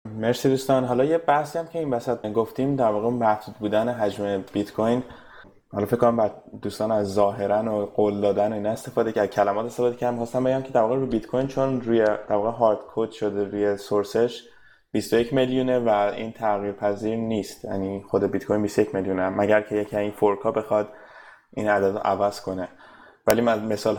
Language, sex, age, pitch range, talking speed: Persian, male, 20-39, 105-115 Hz, 180 wpm